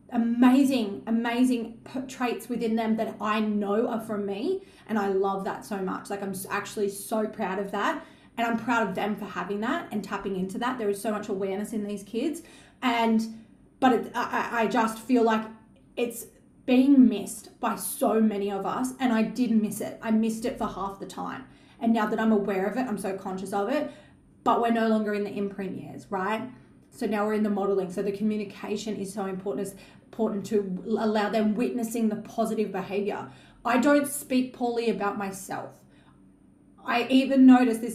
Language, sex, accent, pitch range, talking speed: English, female, Australian, 205-235 Hz, 195 wpm